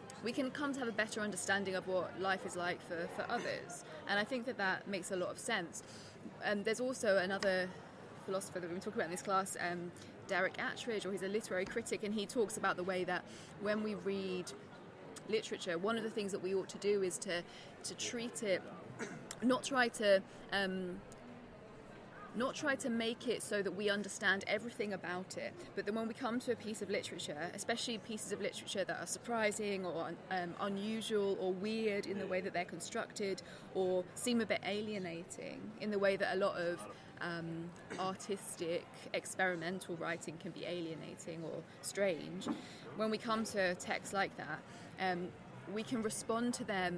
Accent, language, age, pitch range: British, English, 20-39, 175-210 Hz